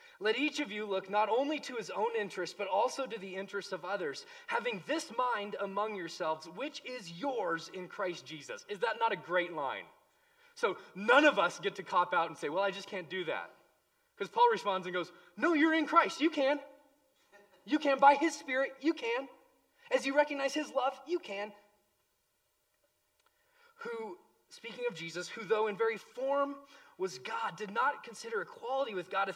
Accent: American